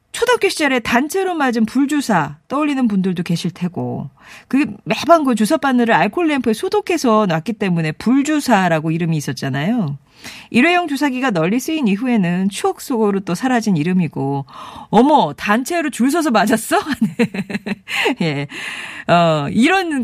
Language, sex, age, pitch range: Korean, female, 40-59, 180-280 Hz